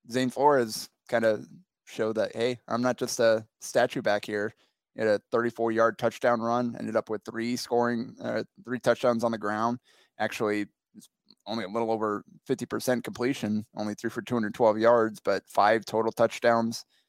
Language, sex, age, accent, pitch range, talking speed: English, male, 20-39, American, 105-120 Hz, 165 wpm